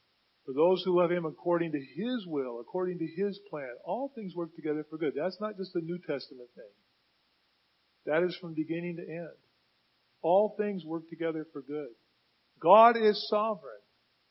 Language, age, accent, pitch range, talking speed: English, 40-59, American, 140-185 Hz, 170 wpm